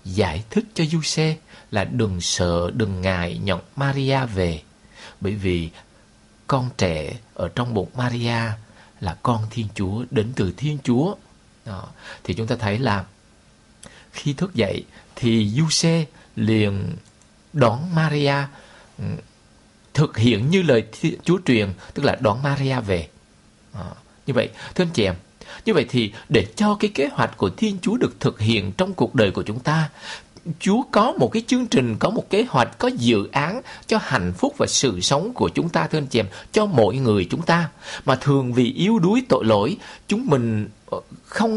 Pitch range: 105-170 Hz